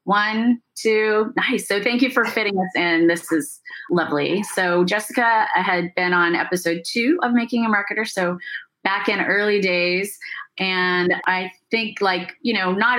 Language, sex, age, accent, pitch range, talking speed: English, female, 30-49, American, 165-225 Hz, 170 wpm